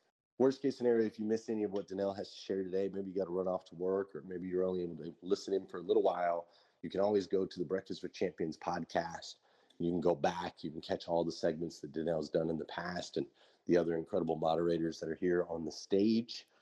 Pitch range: 85-105 Hz